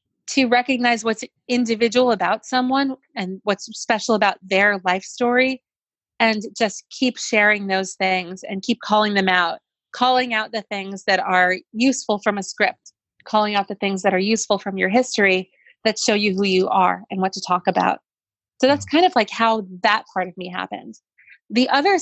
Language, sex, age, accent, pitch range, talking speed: English, female, 30-49, American, 190-225 Hz, 185 wpm